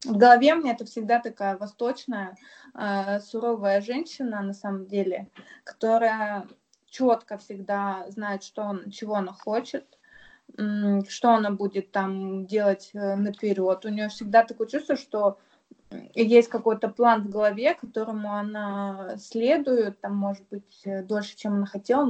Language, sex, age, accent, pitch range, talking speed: Russian, female, 20-39, native, 200-245 Hz, 135 wpm